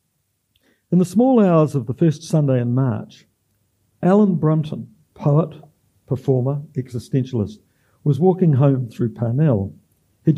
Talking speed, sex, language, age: 120 wpm, male, English, 60-79